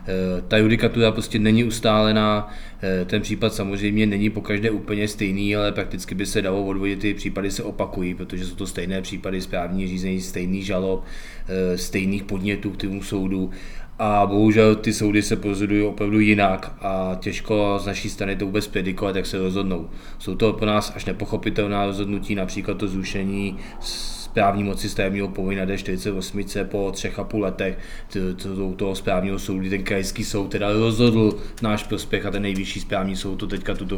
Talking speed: 165 wpm